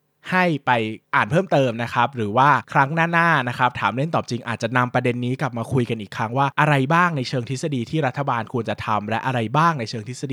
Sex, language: male, Thai